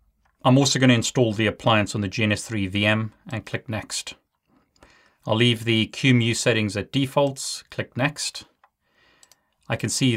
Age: 30-49